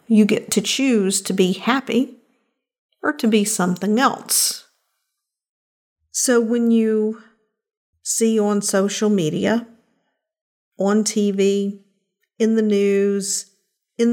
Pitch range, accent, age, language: 190-225 Hz, American, 50-69, English